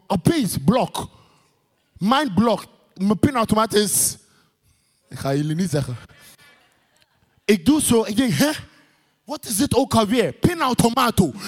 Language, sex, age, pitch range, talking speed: English, male, 20-39, 165-255 Hz, 130 wpm